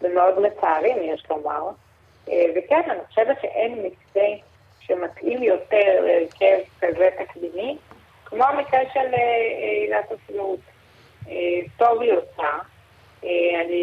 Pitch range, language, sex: 180-265 Hz, Hebrew, female